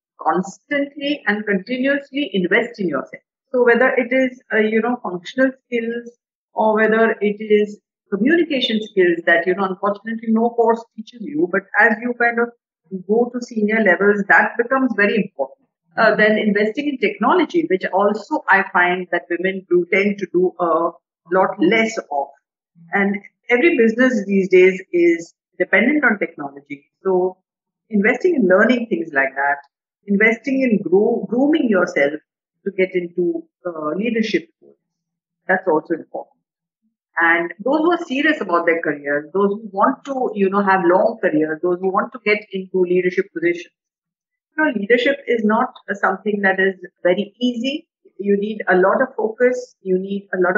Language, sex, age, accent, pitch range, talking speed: Hindi, female, 50-69, native, 180-235 Hz, 160 wpm